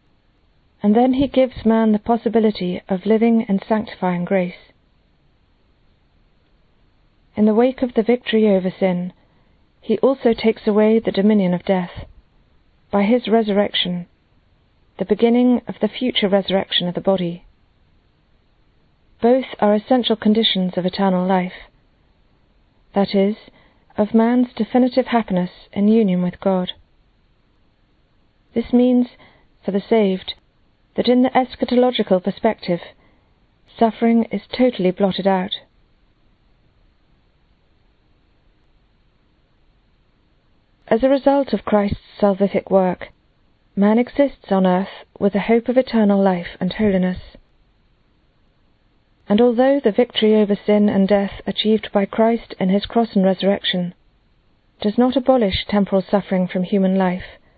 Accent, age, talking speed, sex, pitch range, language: British, 40-59, 120 wpm, female, 190-230 Hz, English